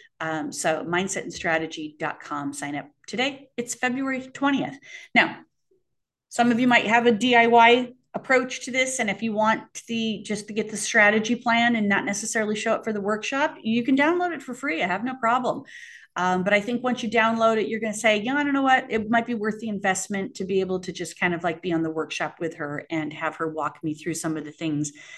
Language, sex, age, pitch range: English, female, 40-59, 165-240 Hz